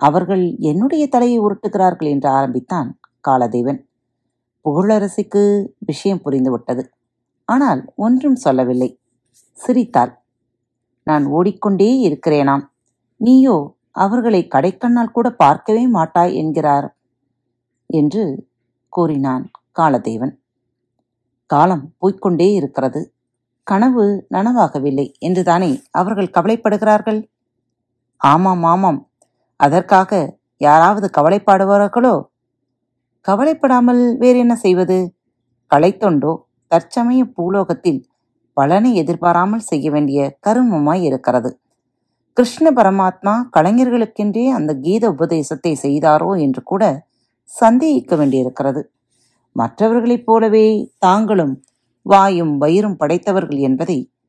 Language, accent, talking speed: Tamil, native, 80 wpm